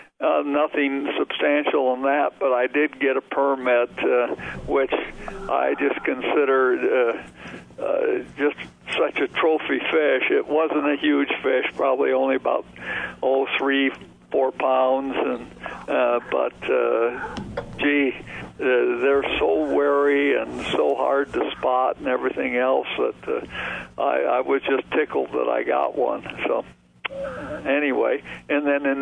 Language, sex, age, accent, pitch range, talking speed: English, male, 60-79, American, 125-145 Hz, 135 wpm